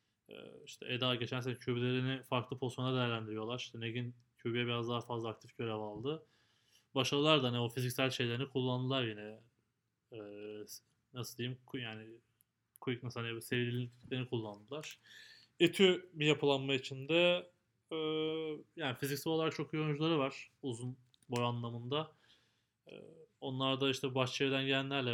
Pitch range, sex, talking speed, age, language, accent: 115-135 Hz, male, 130 wpm, 20-39, Turkish, native